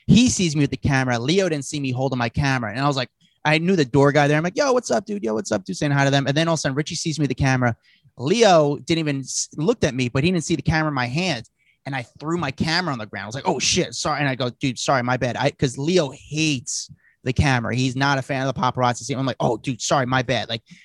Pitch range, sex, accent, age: 130-170 Hz, male, American, 30-49